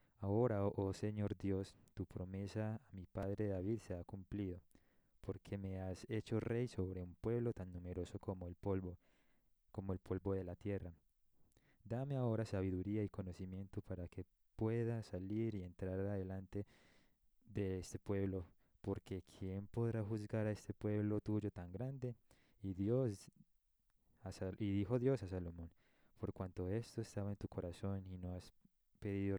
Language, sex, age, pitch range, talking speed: Spanish, male, 20-39, 95-110 Hz, 155 wpm